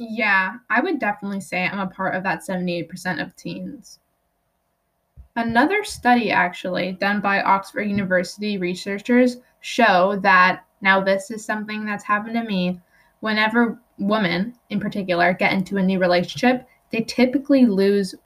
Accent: American